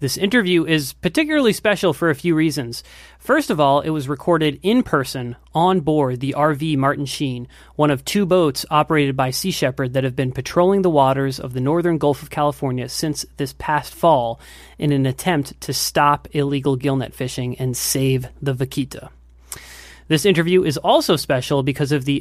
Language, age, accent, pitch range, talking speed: English, 30-49, American, 130-160 Hz, 180 wpm